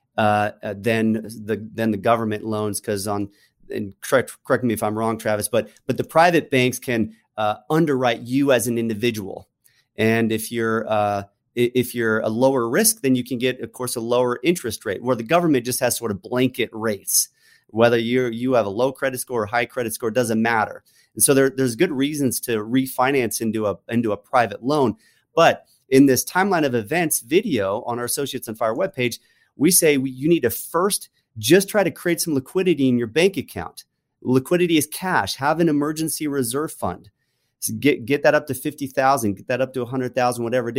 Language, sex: English, male